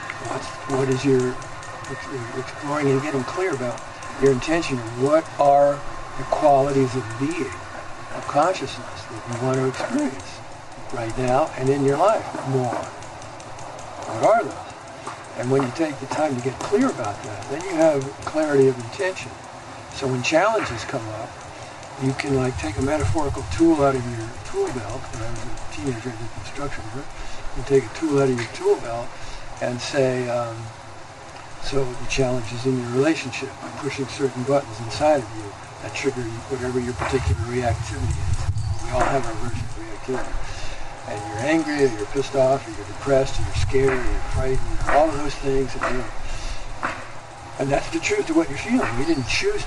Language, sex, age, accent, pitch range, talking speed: English, male, 60-79, American, 115-135 Hz, 185 wpm